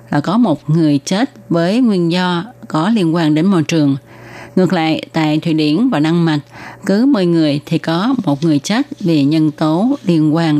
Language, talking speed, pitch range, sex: Vietnamese, 200 wpm, 150-190 Hz, female